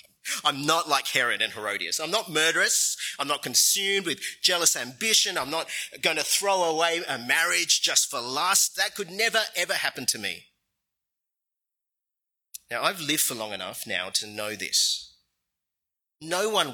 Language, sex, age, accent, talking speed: English, male, 30-49, Australian, 160 wpm